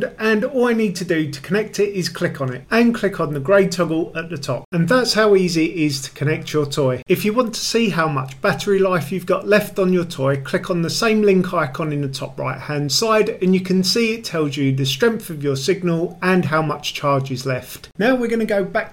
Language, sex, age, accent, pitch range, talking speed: English, male, 40-59, British, 145-205 Hz, 265 wpm